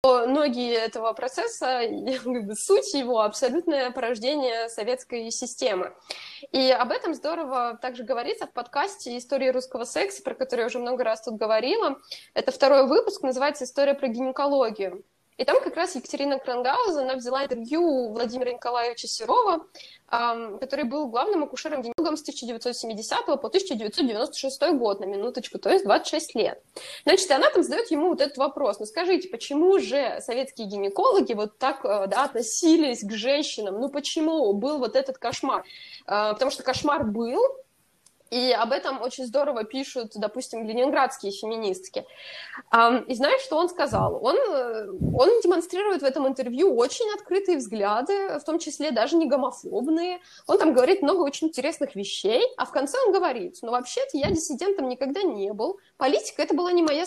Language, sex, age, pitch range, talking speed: Russian, female, 20-39, 240-320 Hz, 155 wpm